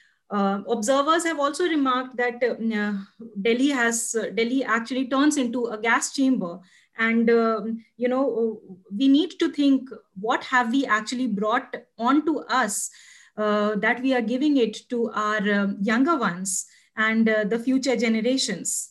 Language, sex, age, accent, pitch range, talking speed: English, female, 20-39, Indian, 210-255 Hz, 150 wpm